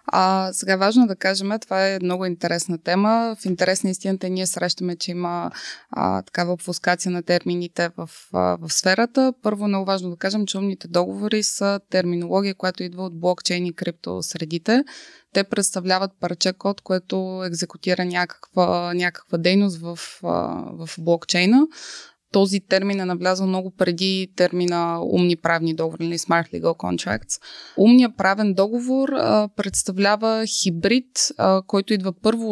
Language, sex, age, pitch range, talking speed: Bulgarian, female, 20-39, 170-200 Hz, 140 wpm